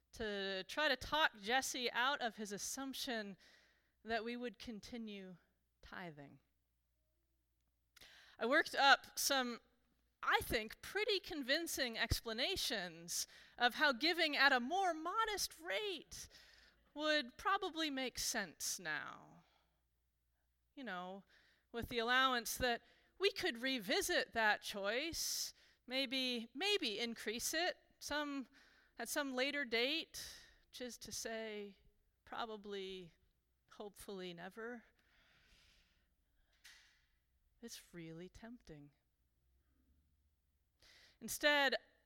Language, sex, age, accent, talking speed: English, female, 30-49, American, 95 wpm